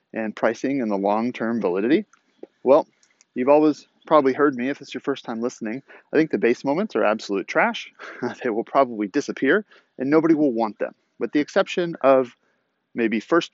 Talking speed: 180 wpm